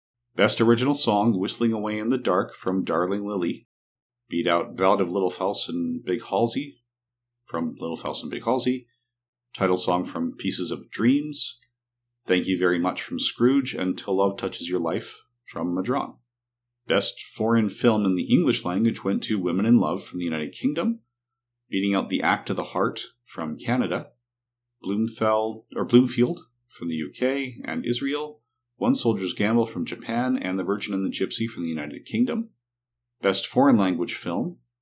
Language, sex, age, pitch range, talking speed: English, male, 40-59, 95-120 Hz, 170 wpm